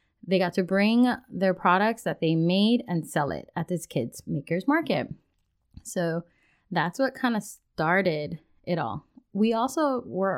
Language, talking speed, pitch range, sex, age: English, 160 wpm, 160-200 Hz, female, 20-39